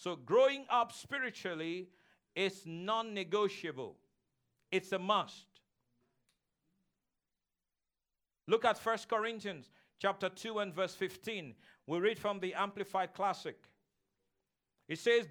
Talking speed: 100 wpm